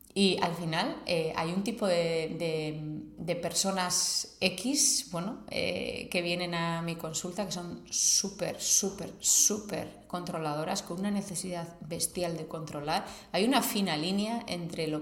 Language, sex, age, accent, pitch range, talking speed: Spanish, female, 30-49, Spanish, 165-195 Hz, 150 wpm